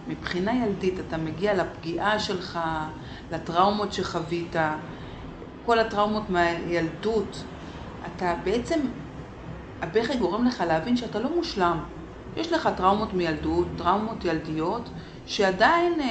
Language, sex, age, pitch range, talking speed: Hebrew, female, 30-49, 170-230 Hz, 100 wpm